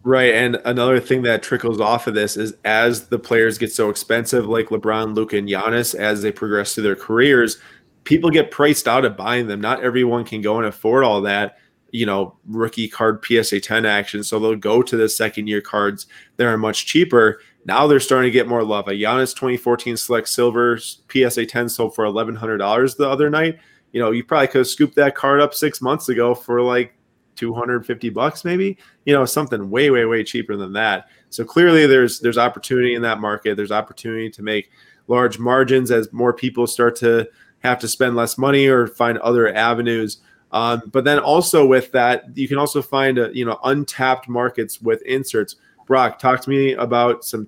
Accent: American